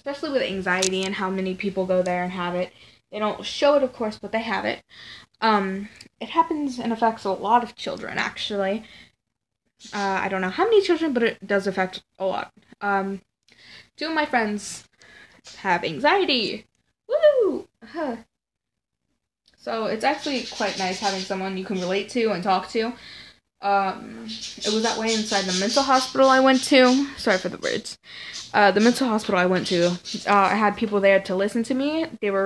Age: 10-29